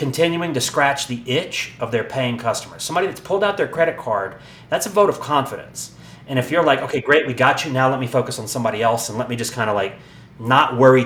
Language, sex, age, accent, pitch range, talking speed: English, male, 40-59, American, 120-150 Hz, 250 wpm